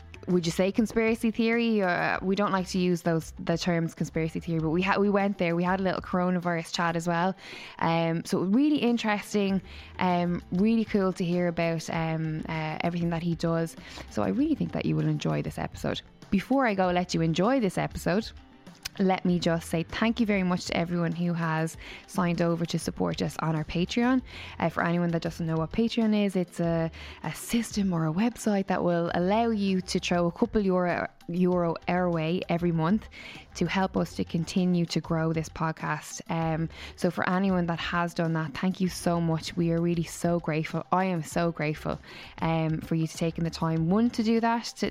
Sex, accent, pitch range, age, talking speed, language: female, Irish, 165-190 Hz, 10-29, 210 wpm, English